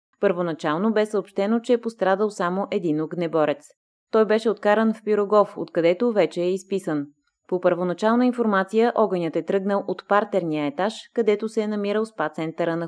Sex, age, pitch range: female, 20-39, 165-215 Hz